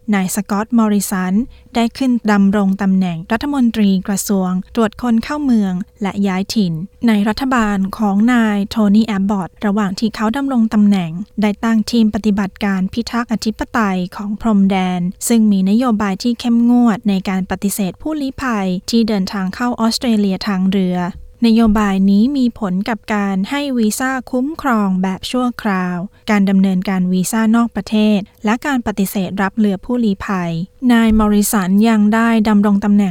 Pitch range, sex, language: 195-230 Hz, female, Thai